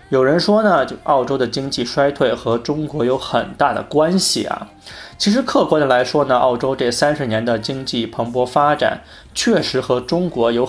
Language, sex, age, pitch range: Chinese, male, 20-39, 120-150 Hz